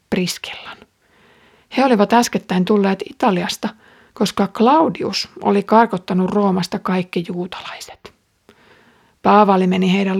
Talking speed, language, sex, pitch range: 90 wpm, Finnish, female, 185-225 Hz